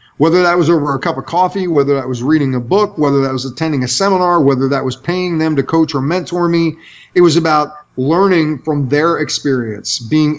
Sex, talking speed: male, 220 wpm